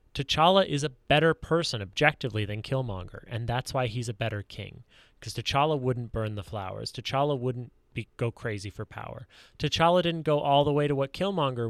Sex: male